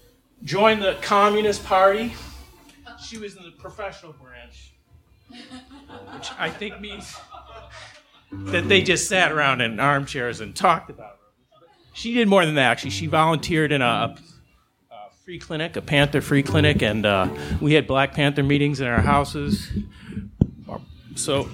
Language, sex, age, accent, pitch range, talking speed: English, male, 40-59, American, 120-175 Hz, 150 wpm